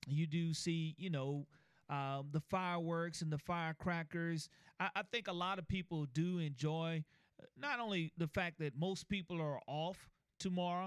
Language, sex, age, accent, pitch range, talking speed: English, male, 30-49, American, 150-175 Hz, 165 wpm